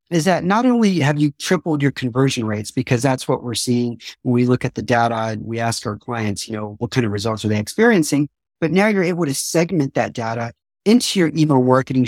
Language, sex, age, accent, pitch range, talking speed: English, male, 40-59, American, 120-160 Hz, 235 wpm